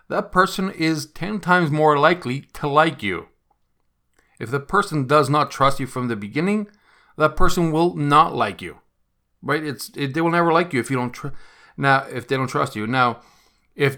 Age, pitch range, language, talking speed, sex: 40-59, 110-145 Hz, English, 200 wpm, male